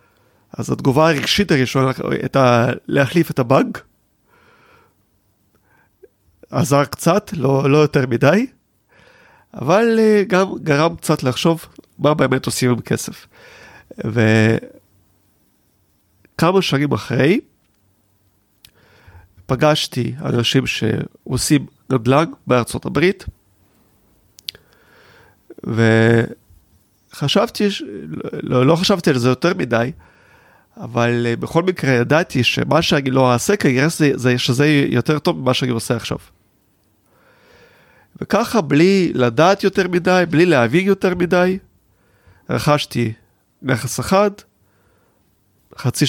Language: Hebrew